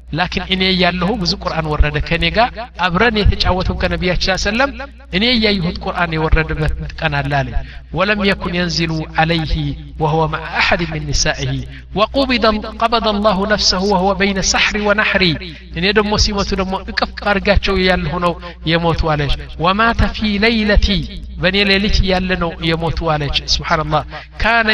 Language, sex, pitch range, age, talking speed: Amharic, male, 155-205 Hz, 60-79, 130 wpm